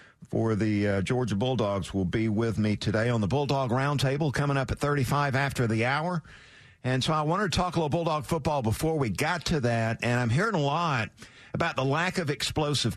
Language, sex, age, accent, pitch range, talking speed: English, male, 50-69, American, 110-145 Hz, 215 wpm